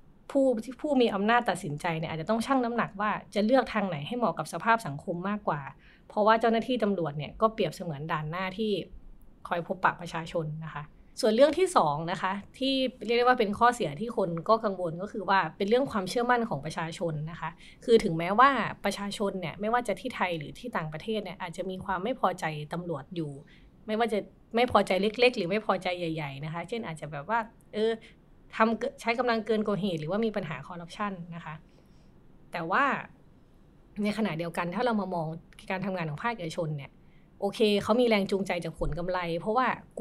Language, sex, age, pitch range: Thai, female, 20-39, 175-225 Hz